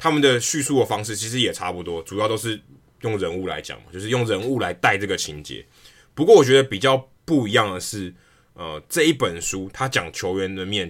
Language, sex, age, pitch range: Chinese, male, 20-39, 95-130 Hz